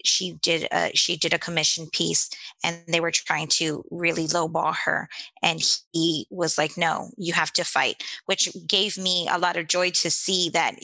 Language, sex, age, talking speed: English, female, 20-39, 185 wpm